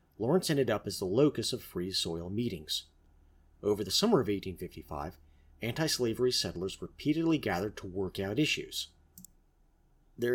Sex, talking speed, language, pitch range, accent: male, 140 wpm, English, 85-125 Hz, American